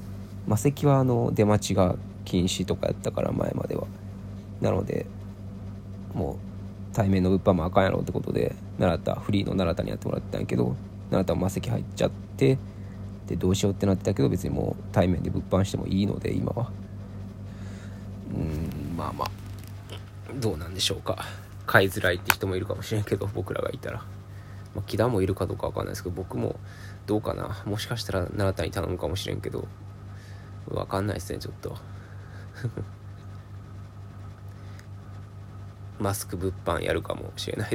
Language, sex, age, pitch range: Japanese, male, 20-39, 95-100 Hz